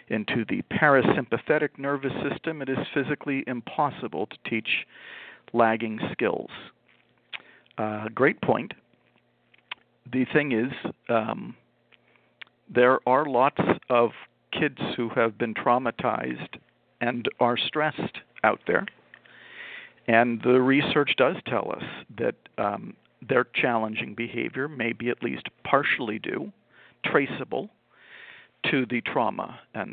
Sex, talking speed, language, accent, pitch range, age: male, 110 wpm, English, American, 115-140 Hz, 50-69